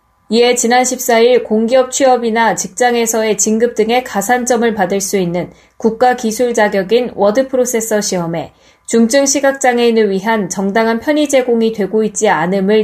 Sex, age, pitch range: female, 20-39, 200-250 Hz